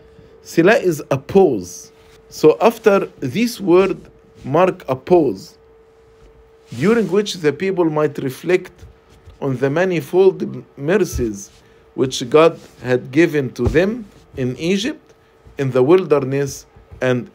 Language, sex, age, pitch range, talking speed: English, male, 50-69, 135-190 Hz, 115 wpm